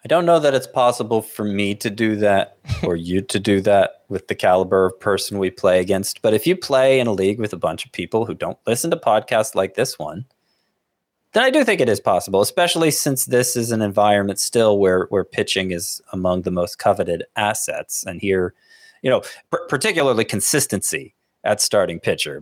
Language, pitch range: English, 95-115 Hz